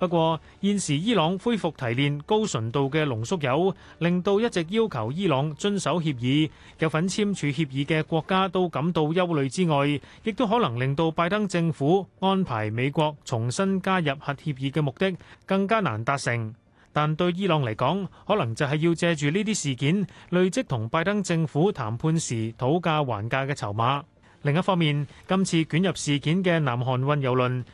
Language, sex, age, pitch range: Chinese, male, 30-49, 135-185 Hz